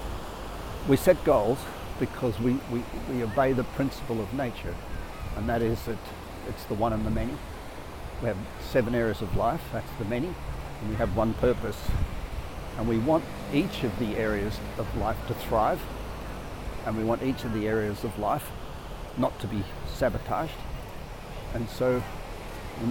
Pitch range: 100-125 Hz